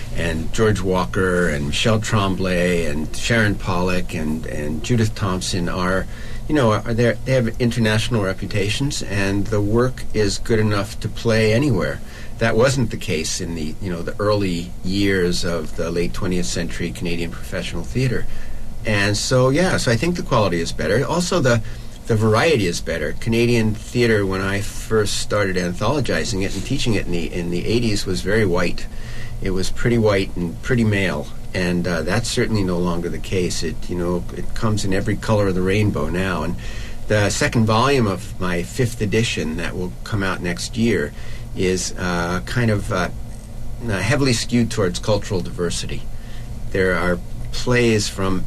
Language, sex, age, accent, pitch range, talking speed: English, male, 50-69, American, 90-115 Hz, 175 wpm